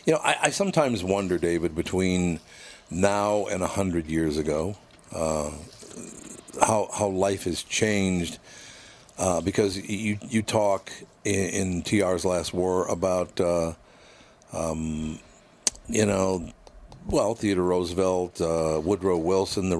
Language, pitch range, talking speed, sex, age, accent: English, 85-105 Hz, 125 wpm, male, 60-79, American